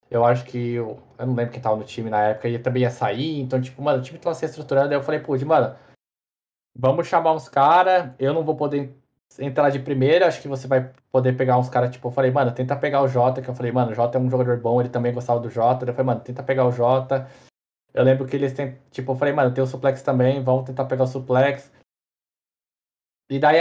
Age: 20-39